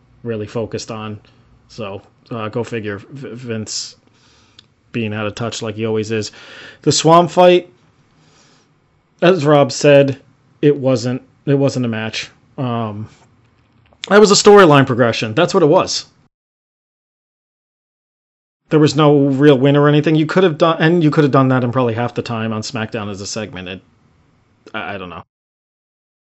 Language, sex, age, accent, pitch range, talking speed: English, male, 30-49, American, 115-140 Hz, 160 wpm